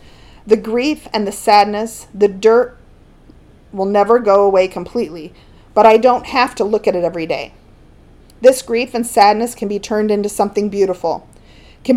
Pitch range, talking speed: 190-230 Hz, 165 wpm